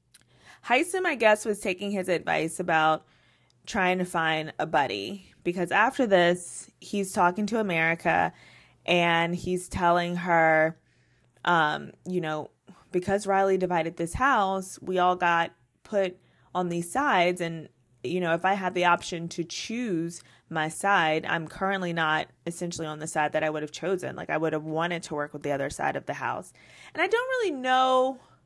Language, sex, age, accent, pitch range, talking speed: English, female, 20-39, American, 155-195 Hz, 175 wpm